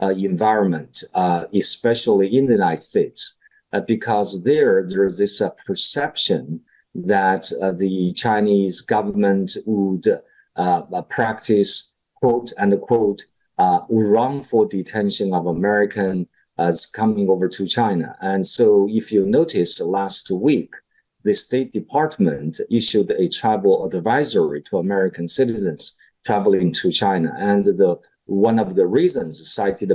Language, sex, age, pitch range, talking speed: English, male, 50-69, 95-120 Hz, 130 wpm